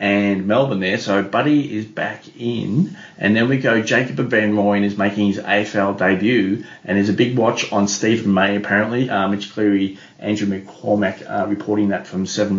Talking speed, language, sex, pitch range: 190 wpm, English, male, 100-115 Hz